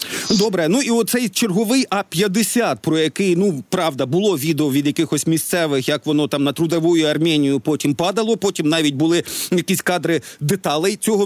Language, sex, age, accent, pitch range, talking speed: Ukrainian, male, 40-59, native, 165-215 Hz, 160 wpm